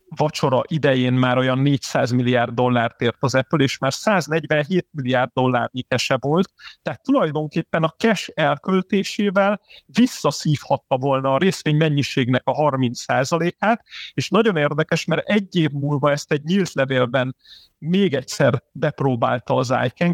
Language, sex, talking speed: Hungarian, male, 130 wpm